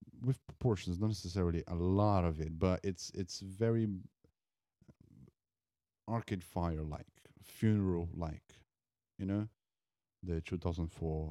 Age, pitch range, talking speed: 30-49, 80-95 Hz, 110 wpm